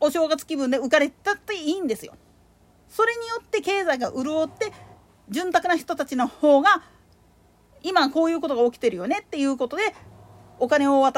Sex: female